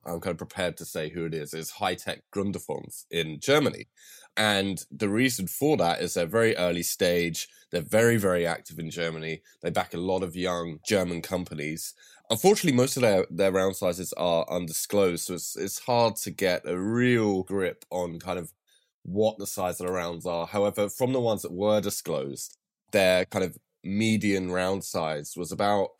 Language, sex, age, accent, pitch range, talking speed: English, male, 20-39, British, 85-110 Hz, 185 wpm